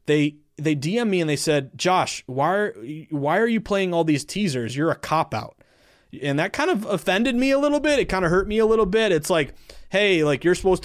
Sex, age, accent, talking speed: male, 20-39, American, 245 wpm